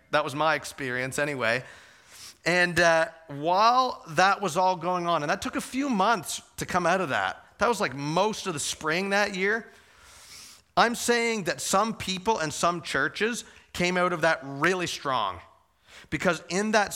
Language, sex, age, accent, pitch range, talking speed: English, male, 40-59, American, 145-195 Hz, 175 wpm